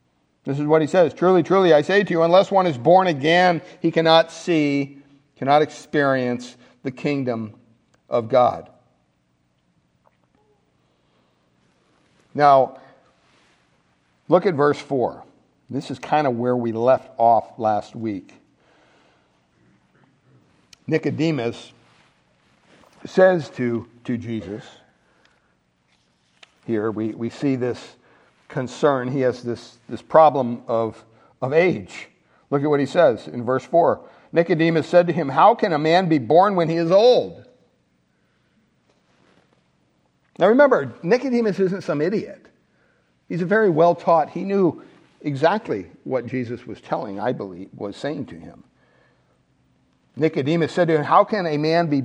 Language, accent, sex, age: English, American, male, 60-79